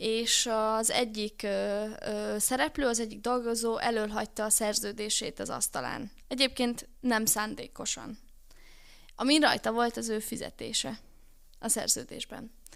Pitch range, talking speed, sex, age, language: 215-260 Hz, 120 wpm, female, 10-29, Hungarian